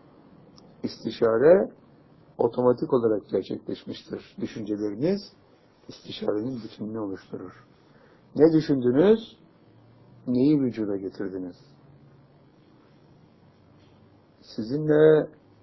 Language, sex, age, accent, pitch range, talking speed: Turkish, male, 60-79, native, 110-150 Hz, 55 wpm